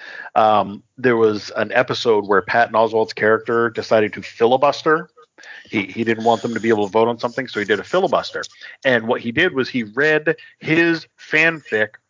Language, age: English, 40-59